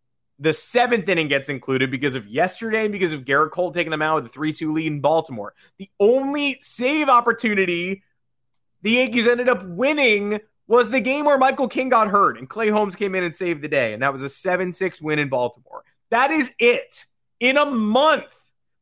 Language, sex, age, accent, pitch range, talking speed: English, male, 20-39, American, 145-225 Hz, 200 wpm